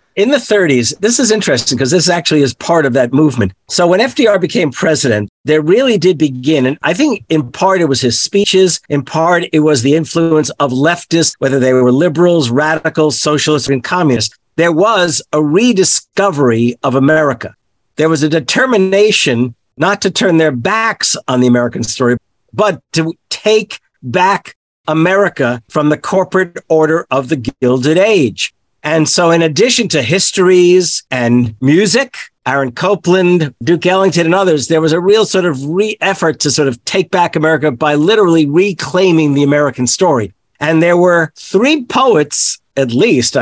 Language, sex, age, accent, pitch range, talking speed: English, male, 50-69, American, 140-185 Hz, 165 wpm